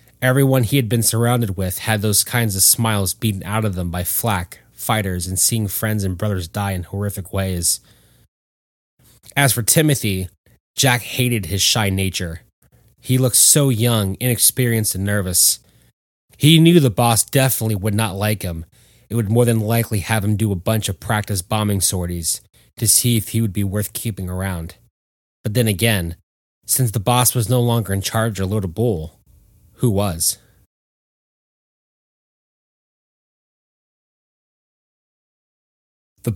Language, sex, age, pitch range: English, male, 30-49, 95-120 Hz